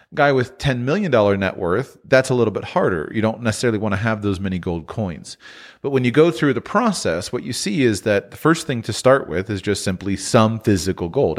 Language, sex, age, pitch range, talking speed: English, male, 40-59, 100-125 Hz, 235 wpm